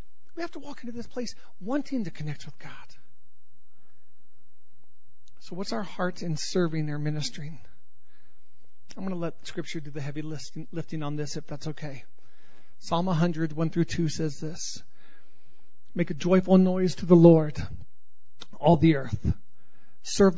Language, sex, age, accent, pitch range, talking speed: English, male, 40-59, American, 145-210 Hz, 155 wpm